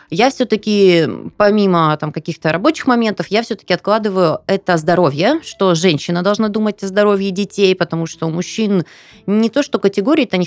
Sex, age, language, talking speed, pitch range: female, 20-39, Russian, 160 wpm, 165-230 Hz